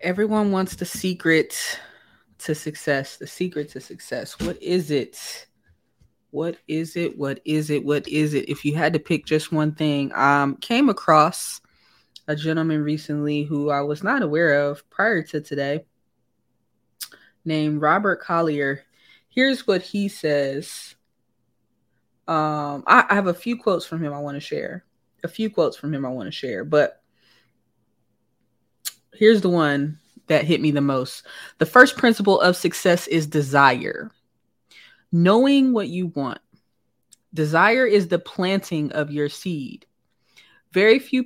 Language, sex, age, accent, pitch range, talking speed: English, female, 20-39, American, 145-185 Hz, 150 wpm